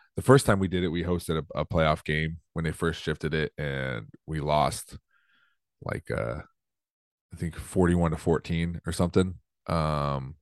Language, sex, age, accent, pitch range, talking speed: English, male, 30-49, American, 75-95 Hz, 175 wpm